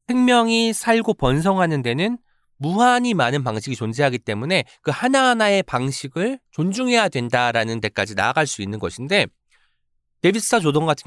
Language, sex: Korean, male